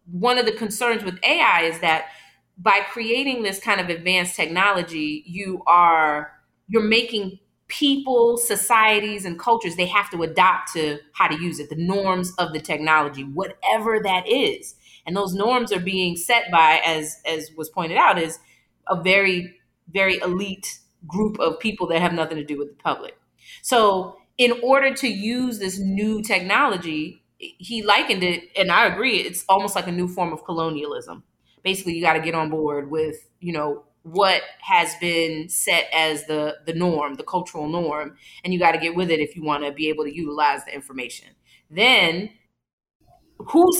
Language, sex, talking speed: English, female, 180 wpm